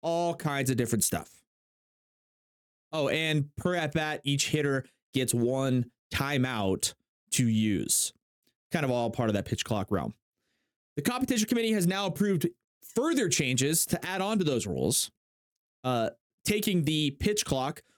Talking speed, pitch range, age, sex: 150 wpm, 130-175 Hz, 30-49, male